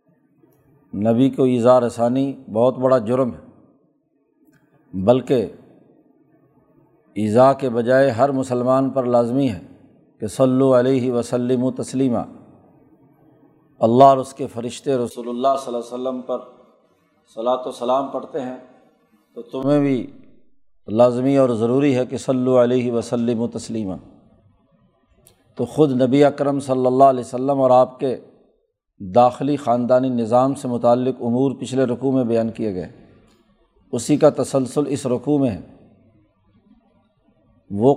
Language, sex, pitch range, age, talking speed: Urdu, male, 120-135 Hz, 50-69, 135 wpm